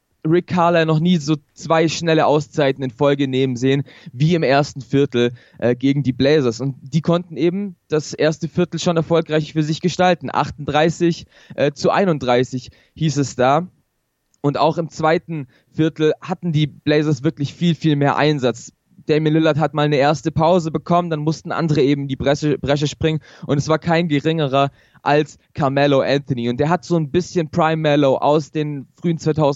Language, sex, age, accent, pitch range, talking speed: German, male, 20-39, German, 140-165 Hz, 175 wpm